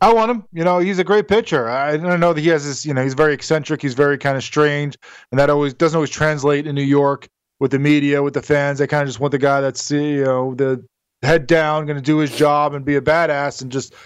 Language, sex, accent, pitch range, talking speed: English, male, American, 135-160 Hz, 275 wpm